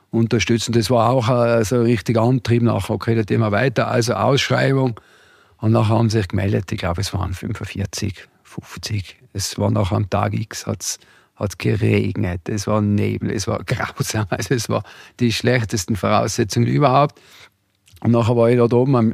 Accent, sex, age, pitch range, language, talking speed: German, male, 50-69, 110-125 Hz, German, 170 wpm